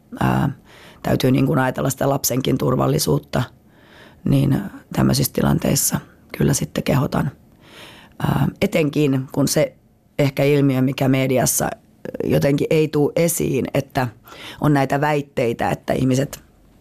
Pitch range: 130-145 Hz